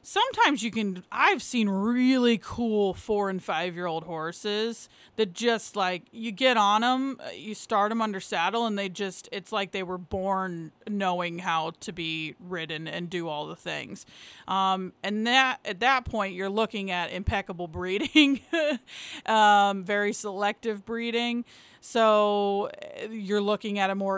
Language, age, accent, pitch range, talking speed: English, 30-49, American, 195-240 Hz, 160 wpm